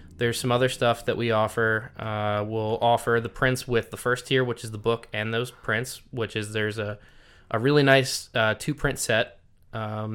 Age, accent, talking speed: 20-39, American, 205 wpm